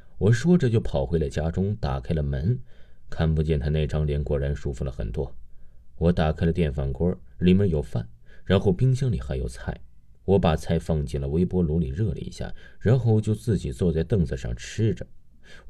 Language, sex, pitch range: Chinese, male, 75-95 Hz